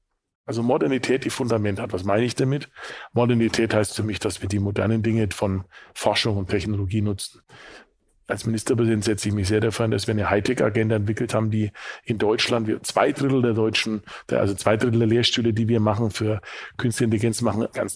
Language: German